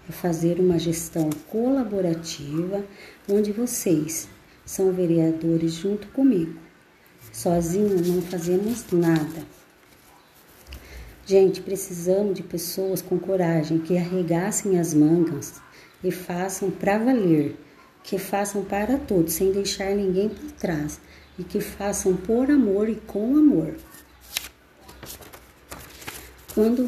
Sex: female